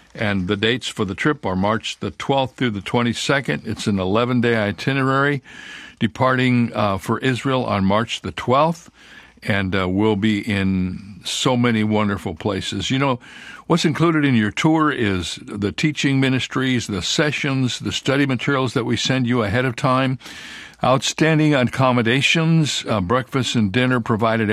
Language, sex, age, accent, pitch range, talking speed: English, male, 60-79, American, 105-130 Hz, 155 wpm